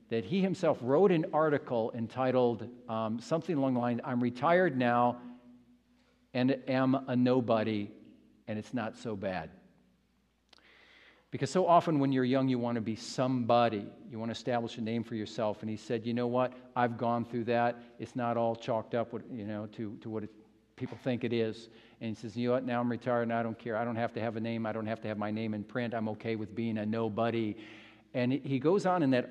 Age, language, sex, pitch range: 50-69, English, male, 115-150 Hz